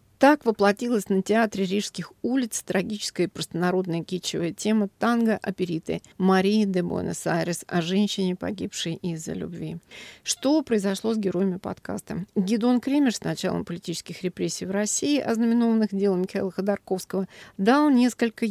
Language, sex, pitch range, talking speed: Russian, female, 175-215 Hz, 125 wpm